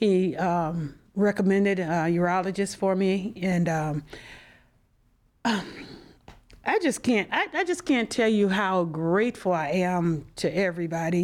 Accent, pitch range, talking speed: American, 175-220 Hz, 135 wpm